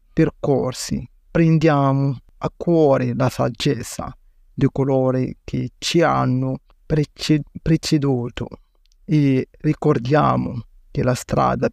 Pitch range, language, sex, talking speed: 125-150 Hz, Italian, male, 85 wpm